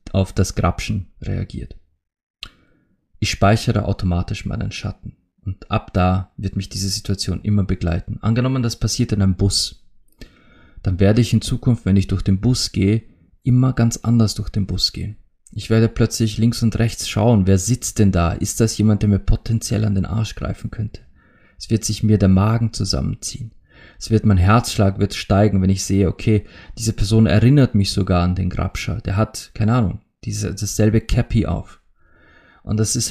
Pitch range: 95-115 Hz